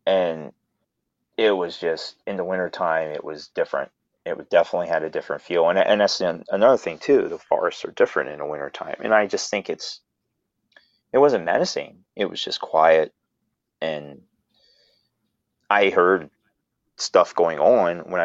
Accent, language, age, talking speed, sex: American, English, 30-49, 160 wpm, male